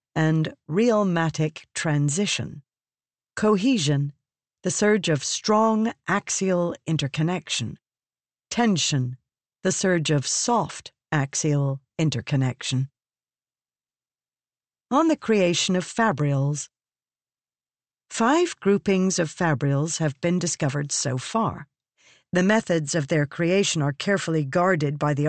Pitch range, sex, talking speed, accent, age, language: 140-195 Hz, female, 95 wpm, American, 50-69, English